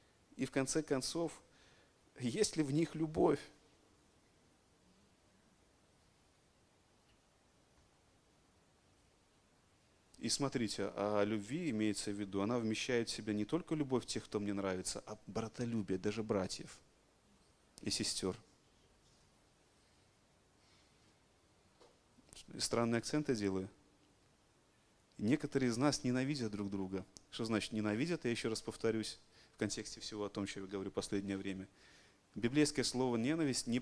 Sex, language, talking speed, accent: male, Russian, 115 wpm, native